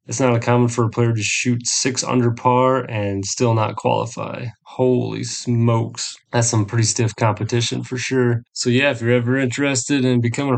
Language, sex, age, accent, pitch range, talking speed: English, male, 20-39, American, 105-120 Hz, 180 wpm